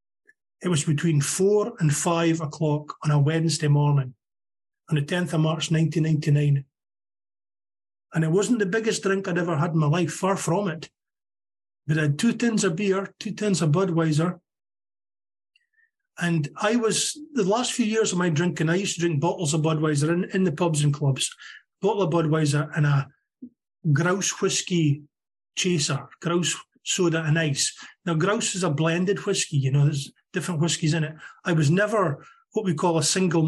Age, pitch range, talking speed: 30-49, 155-195 Hz, 175 wpm